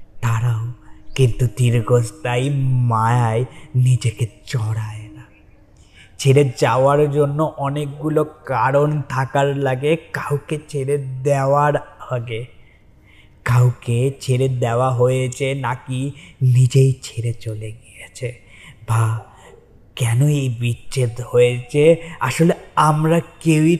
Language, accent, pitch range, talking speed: Bengali, native, 115-140 Hz, 35 wpm